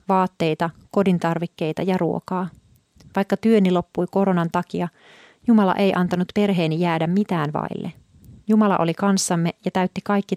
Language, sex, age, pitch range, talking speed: Finnish, female, 30-49, 170-200 Hz, 125 wpm